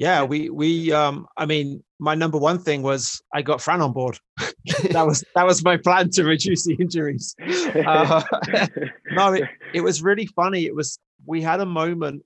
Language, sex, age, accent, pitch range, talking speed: English, male, 30-49, British, 120-150 Hz, 190 wpm